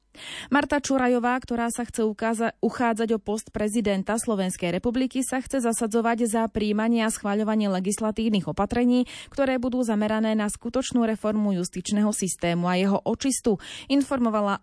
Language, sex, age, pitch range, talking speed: Slovak, female, 20-39, 195-250 Hz, 135 wpm